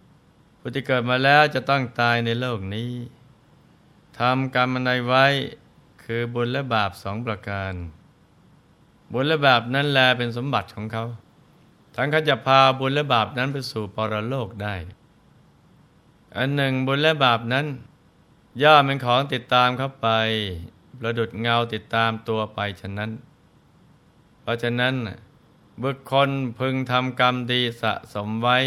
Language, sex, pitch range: Thai, male, 110-135 Hz